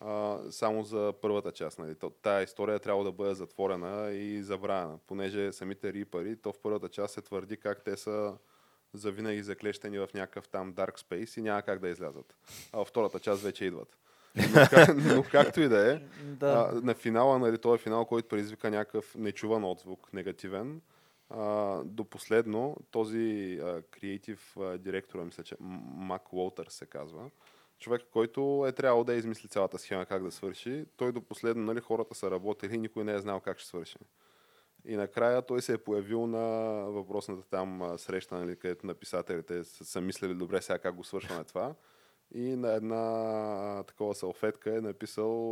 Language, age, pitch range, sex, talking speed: Bulgarian, 20-39, 100-115 Hz, male, 170 wpm